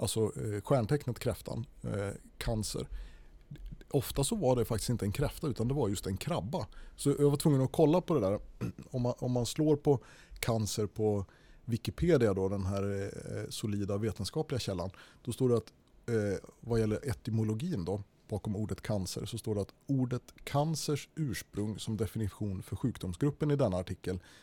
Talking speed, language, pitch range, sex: 170 wpm, Swedish, 95-125 Hz, male